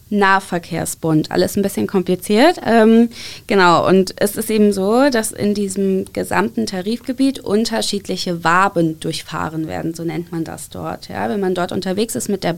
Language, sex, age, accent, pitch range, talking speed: German, female, 20-39, German, 185-225 Hz, 155 wpm